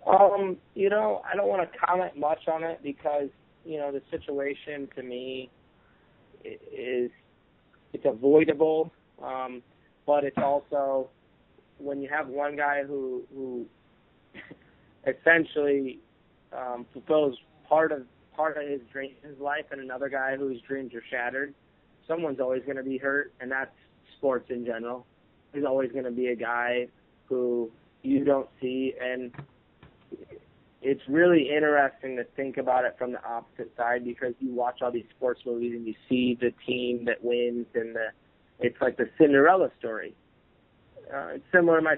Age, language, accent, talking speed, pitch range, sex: 30-49, English, American, 155 wpm, 125-150 Hz, male